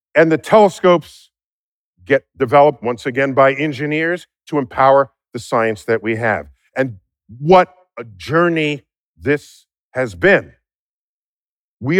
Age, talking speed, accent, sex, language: 50-69, 120 wpm, American, male, English